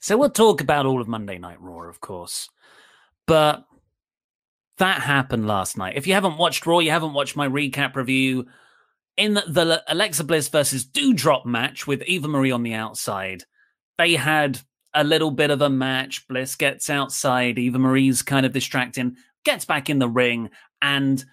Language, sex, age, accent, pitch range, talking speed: English, male, 30-49, British, 130-185 Hz, 175 wpm